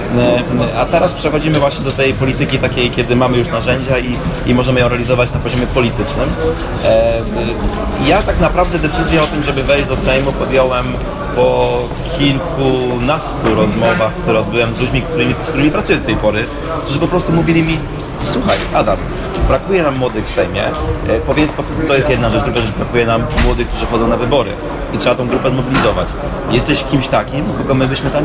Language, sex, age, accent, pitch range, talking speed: Polish, male, 30-49, native, 120-145 Hz, 175 wpm